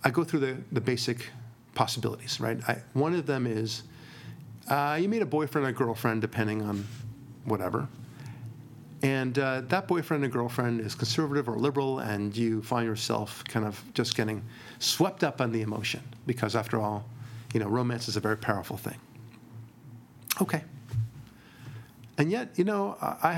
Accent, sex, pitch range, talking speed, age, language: American, male, 115-130 Hz, 160 wpm, 40-59, English